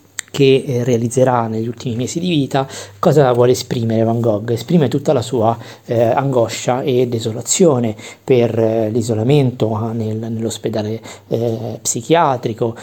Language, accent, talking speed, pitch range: Italian, native, 115 wpm, 115-130 Hz